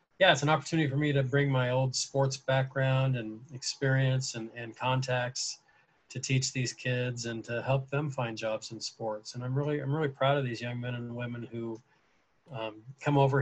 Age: 40-59